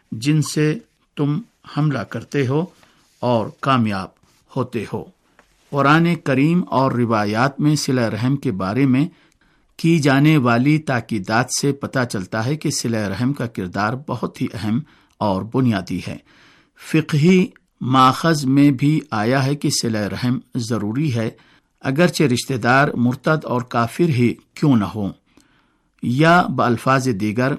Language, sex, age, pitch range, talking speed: Urdu, male, 50-69, 115-145 Hz, 135 wpm